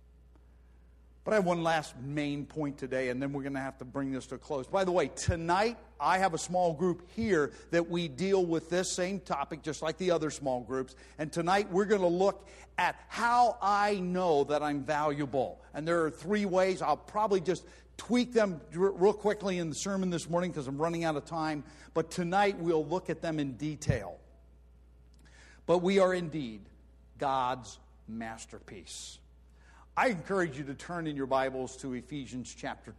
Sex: male